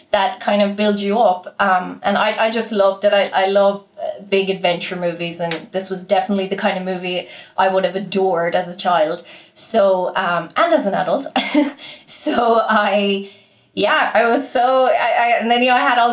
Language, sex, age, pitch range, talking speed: English, female, 20-39, 195-240 Hz, 210 wpm